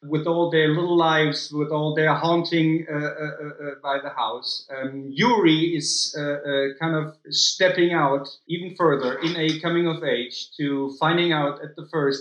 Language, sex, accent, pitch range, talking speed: English, male, German, 145-170 Hz, 180 wpm